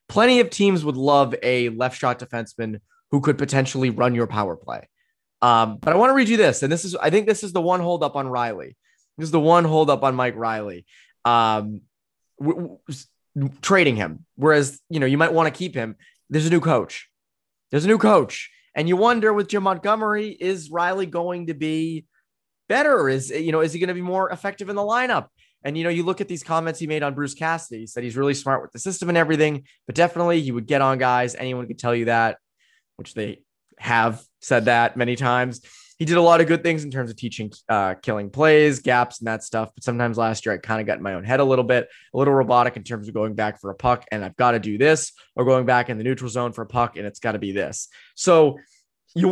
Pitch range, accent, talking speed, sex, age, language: 120-165 Hz, American, 240 wpm, male, 20-39, English